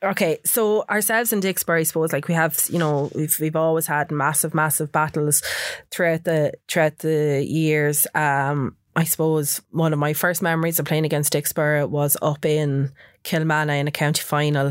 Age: 20-39